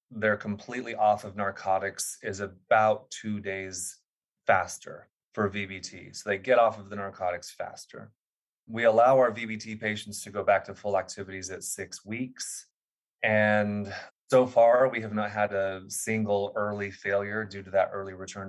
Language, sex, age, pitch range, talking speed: English, male, 30-49, 95-110 Hz, 160 wpm